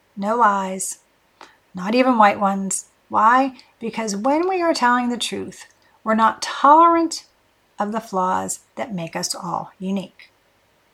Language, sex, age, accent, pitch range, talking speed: English, female, 40-59, American, 195-255 Hz, 135 wpm